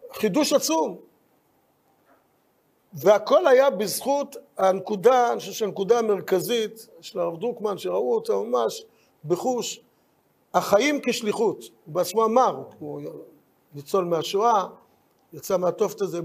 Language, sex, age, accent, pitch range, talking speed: Hebrew, male, 50-69, native, 205-265 Hz, 105 wpm